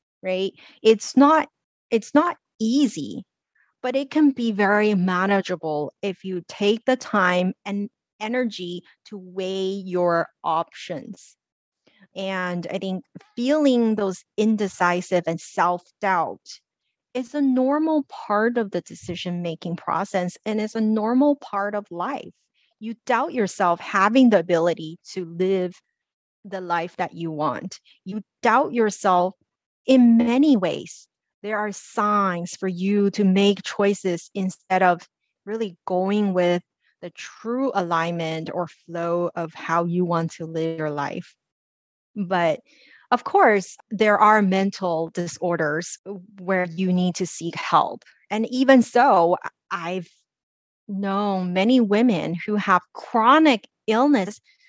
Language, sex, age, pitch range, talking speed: English, female, 30-49, 175-225 Hz, 125 wpm